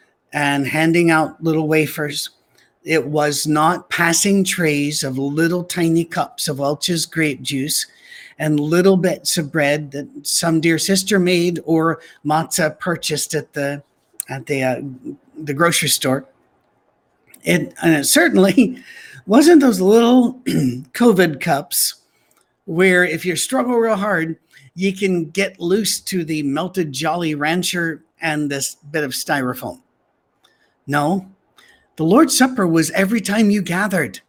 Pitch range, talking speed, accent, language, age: 150-205 Hz, 135 wpm, American, English, 50-69